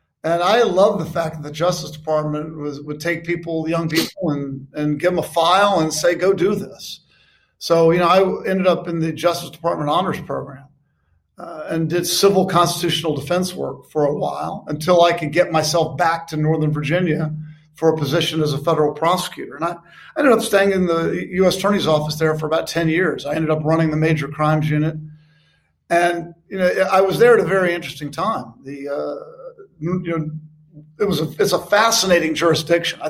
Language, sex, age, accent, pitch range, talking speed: English, male, 50-69, American, 155-175 Hz, 200 wpm